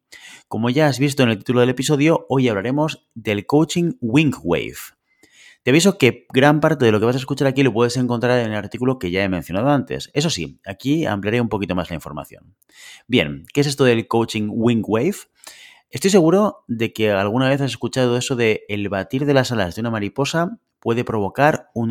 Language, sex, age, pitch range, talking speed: Spanish, male, 30-49, 105-140 Hz, 210 wpm